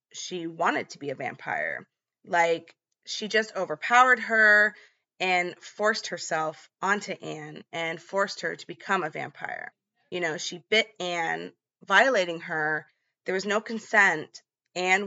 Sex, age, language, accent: female, 20-39, English, American